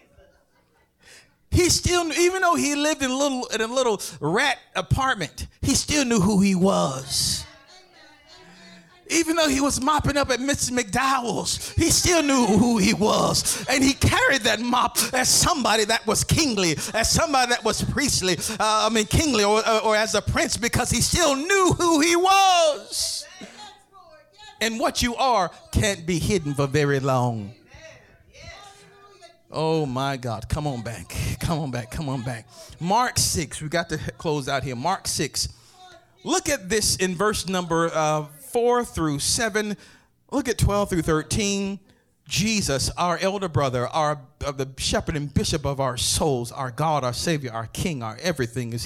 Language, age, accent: English, 40-59, American